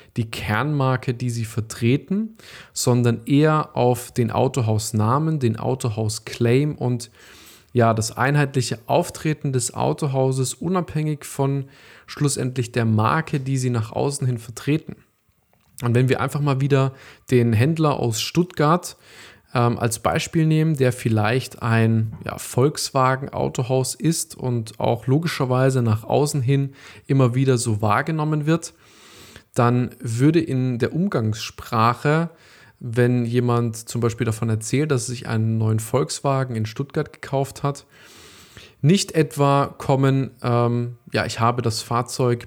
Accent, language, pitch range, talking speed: German, German, 115-145 Hz, 130 wpm